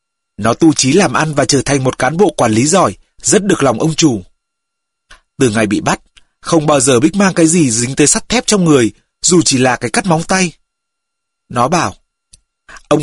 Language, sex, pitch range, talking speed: Vietnamese, male, 130-180 Hz, 210 wpm